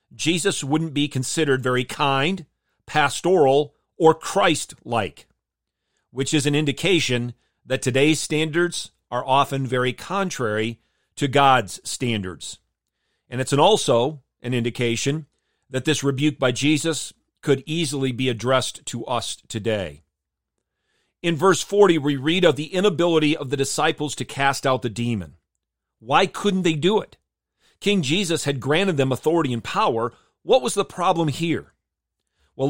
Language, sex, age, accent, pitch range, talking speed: English, male, 40-59, American, 120-155 Hz, 140 wpm